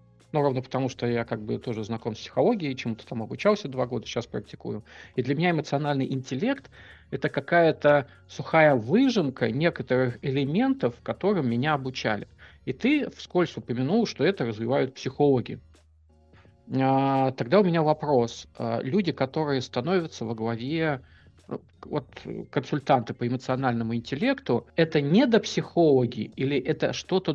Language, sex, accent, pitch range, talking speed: Russian, male, native, 120-155 Hz, 130 wpm